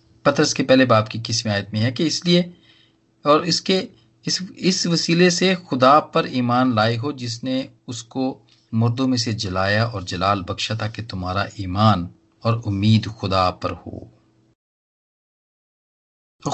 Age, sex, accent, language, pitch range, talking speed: 40-59, male, native, Hindi, 110-130 Hz, 125 wpm